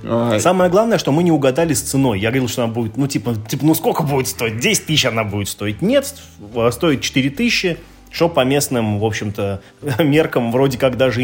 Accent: native